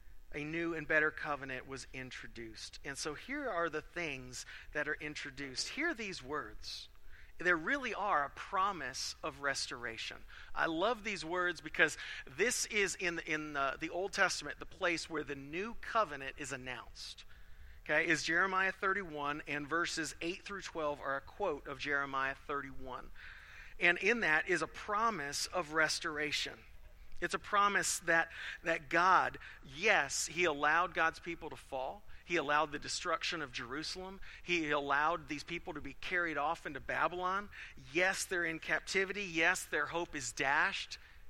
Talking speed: 155 wpm